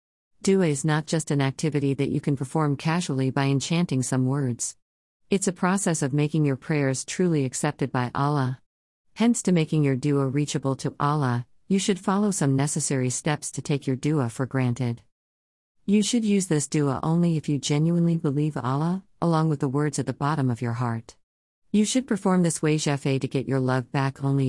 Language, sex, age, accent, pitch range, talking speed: English, female, 40-59, American, 130-160 Hz, 190 wpm